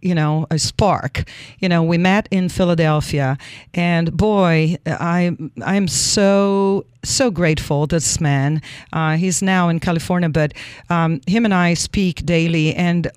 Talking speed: 150 wpm